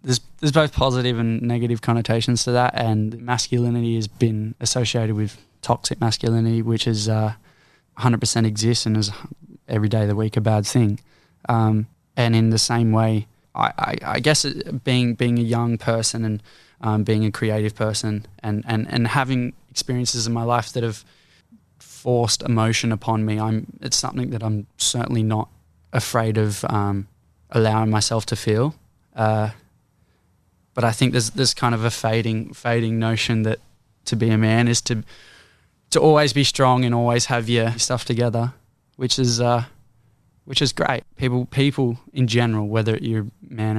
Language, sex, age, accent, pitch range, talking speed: English, male, 20-39, Australian, 110-125 Hz, 170 wpm